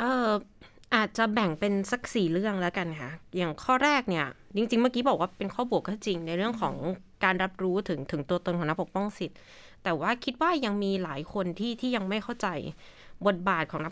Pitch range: 165-210 Hz